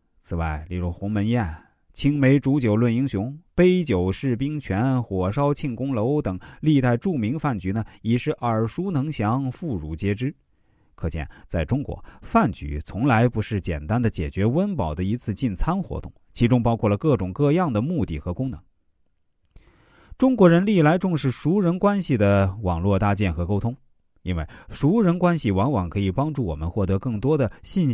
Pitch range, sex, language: 90-140 Hz, male, Chinese